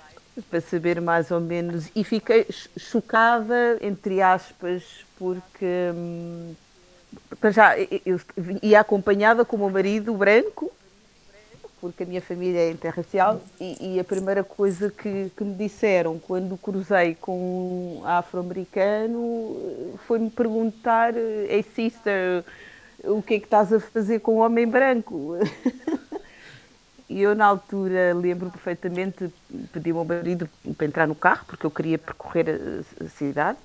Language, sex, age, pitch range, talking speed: Portuguese, female, 30-49, 175-215 Hz, 140 wpm